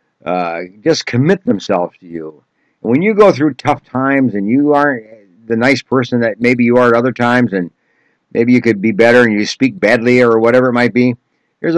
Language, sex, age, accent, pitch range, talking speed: English, male, 60-79, American, 105-135 Hz, 215 wpm